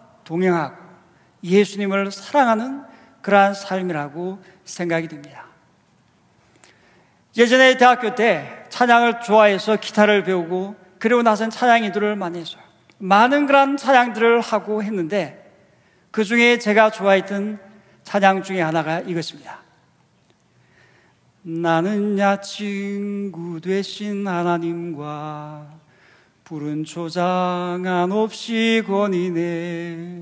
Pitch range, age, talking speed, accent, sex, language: 175-225 Hz, 40-59, 80 wpm, Korean, male, English